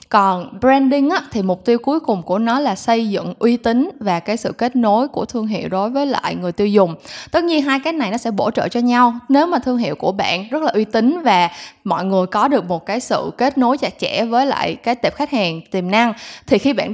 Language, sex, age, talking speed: Vietnamese, female, 10-29, 260 wpm